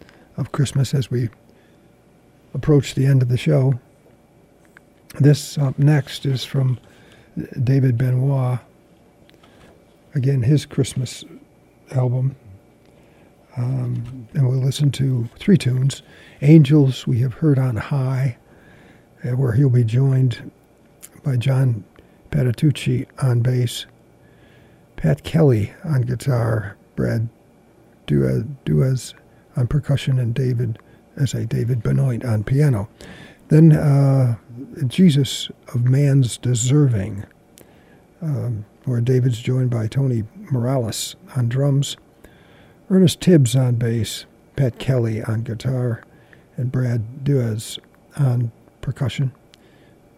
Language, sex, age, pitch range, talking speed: English, male, 50-69, 120-140 Hz, 105 wpm